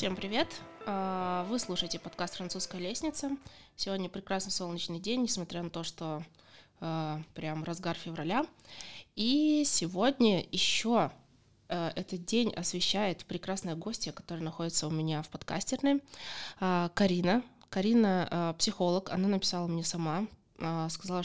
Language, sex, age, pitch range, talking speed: Russian, female, 20-39, 175-220 Hz, 115 wpm